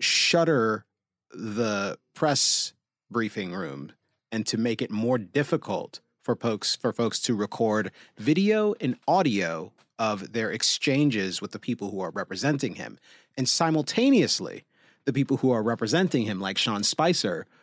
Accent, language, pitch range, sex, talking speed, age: American, English, 105-145 Hz, male, 140 wpm, 30-49